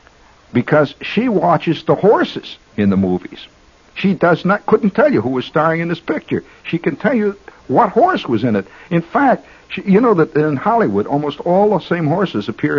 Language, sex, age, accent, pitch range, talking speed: English, male, 60-79, American, 105-155 Hz, 200 wpm